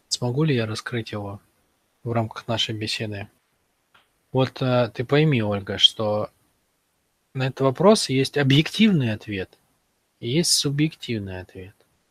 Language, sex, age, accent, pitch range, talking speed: Russian, male, 20-39, native, 115-145 Hz, 115 wpm